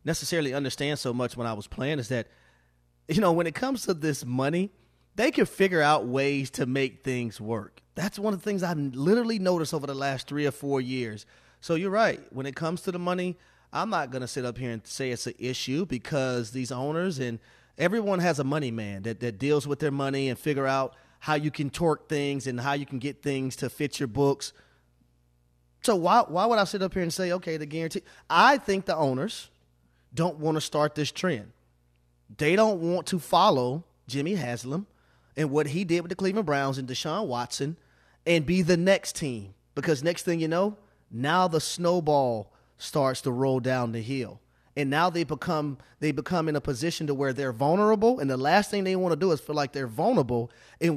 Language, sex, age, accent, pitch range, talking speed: English, male, 30-49, American, 125-170 Hz, 215 wpm